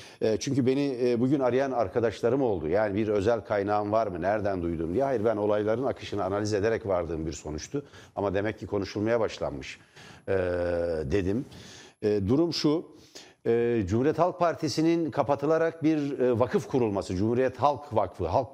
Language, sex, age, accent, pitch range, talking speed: Turkish, male, 60-79, native, 110-145 Hz, 140 wpm